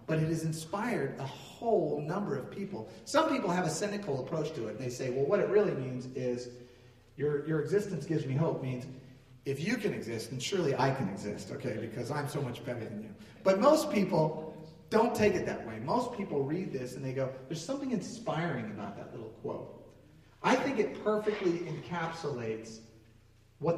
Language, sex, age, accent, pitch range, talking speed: English, male, 40-59, American, 130-180 Hz, 195 wpm